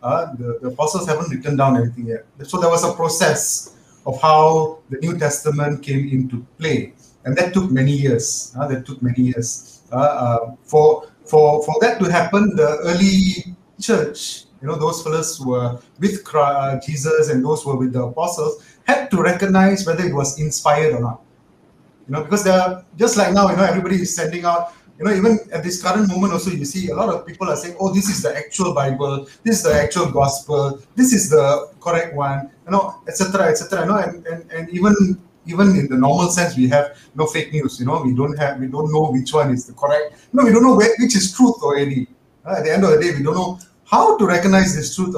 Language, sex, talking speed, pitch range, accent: English, male, 230 wpm, 140-185 Hz, Indian